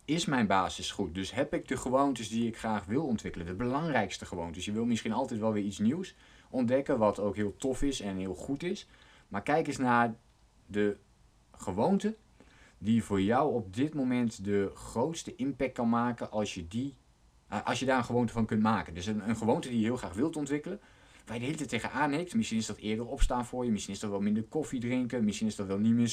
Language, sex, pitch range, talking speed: Dutch, male, 100-130 Hz, 230 wpm